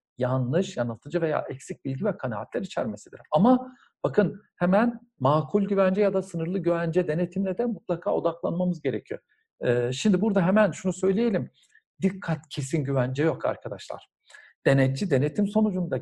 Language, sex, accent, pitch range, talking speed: Turkish, male, native, 160-205 Hz, 135 wpm